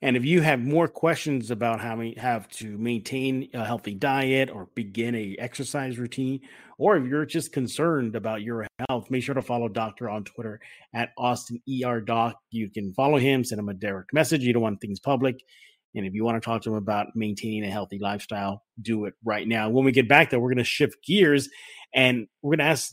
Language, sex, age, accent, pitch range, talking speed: English, male, 30-49, American, 115-145 Hz, 220 wpm